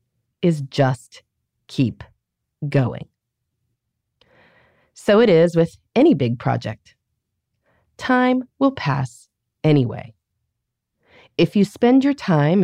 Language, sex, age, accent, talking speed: English, female, 30-49, American, 95 wpm